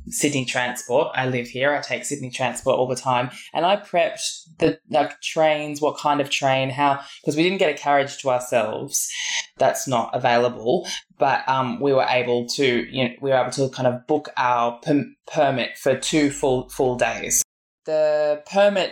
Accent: Australian